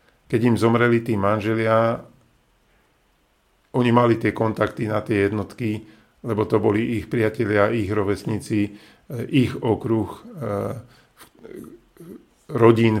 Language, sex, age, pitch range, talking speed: Slovak, male, 50-69, 110-125 Hz, 100 wpm